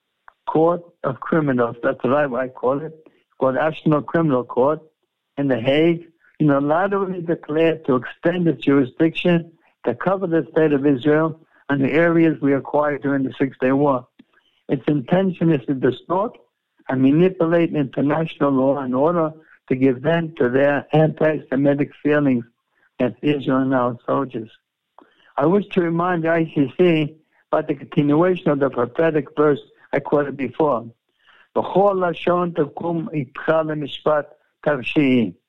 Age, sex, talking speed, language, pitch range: 60-79, male, 130 wpm, English, 135-165 Hz